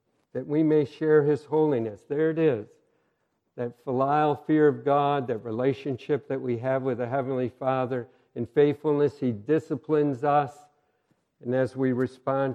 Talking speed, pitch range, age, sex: 155 wpm, 120-145 Hz, 60-79, male